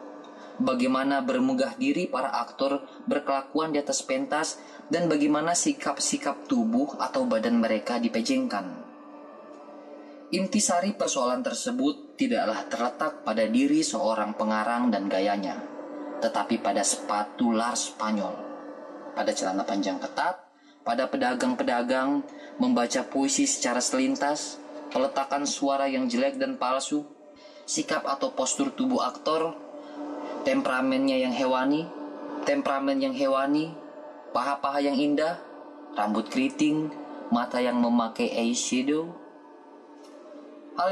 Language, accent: Indonesian, native